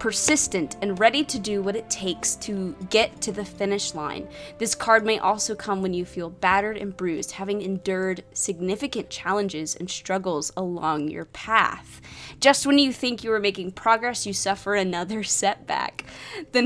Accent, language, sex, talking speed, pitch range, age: American, English, female, 170 wpm, 185-235 Hz, 20-39